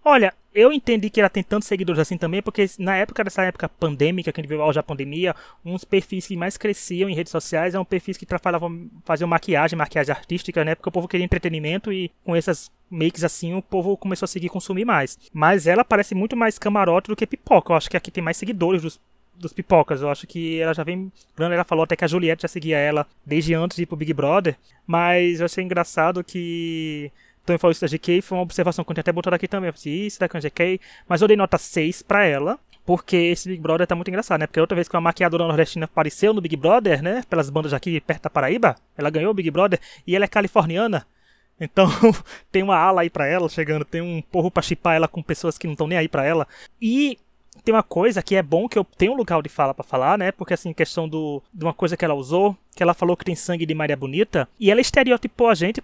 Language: Portuguese